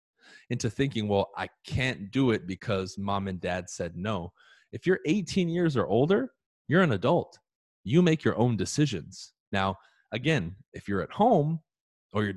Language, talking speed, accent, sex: English, 170 wpm, American, male